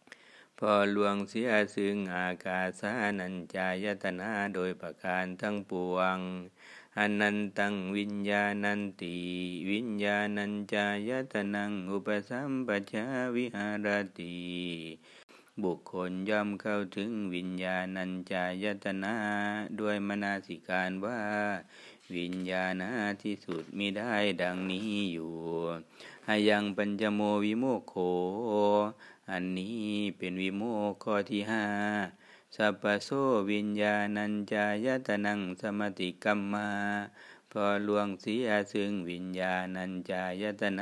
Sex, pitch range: male, 95-105 Hz